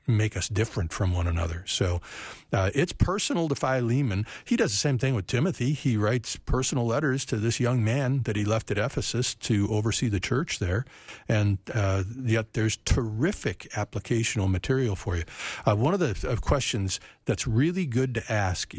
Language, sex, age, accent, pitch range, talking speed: English, male, 50-69, American, 100-130 Hz, 180 wpm